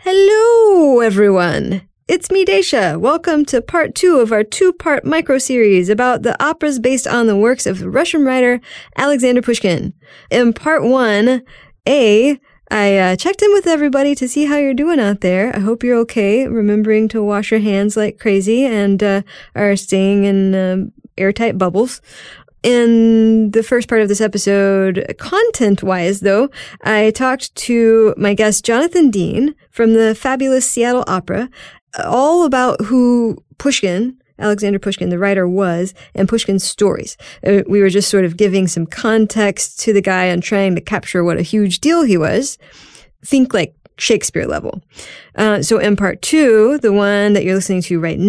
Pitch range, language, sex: 195-255 Hz, English, female